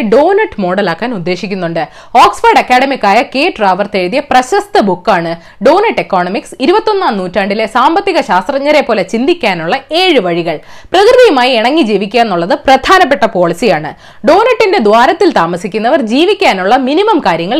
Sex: female